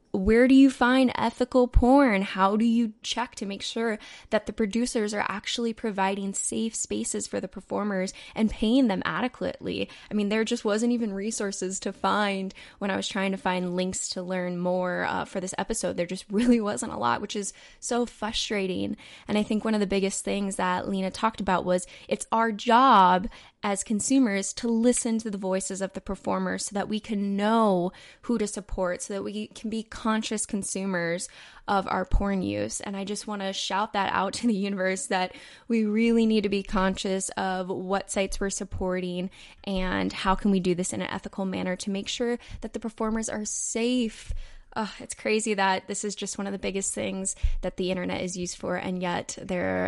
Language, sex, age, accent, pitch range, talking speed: English, female, 10-29, American, 185-220 Hz, 200 wpm